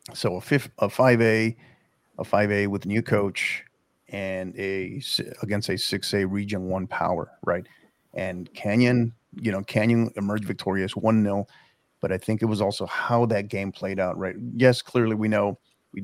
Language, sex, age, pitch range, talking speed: English, male, 40-59, 100-115 Hz, 160 wpm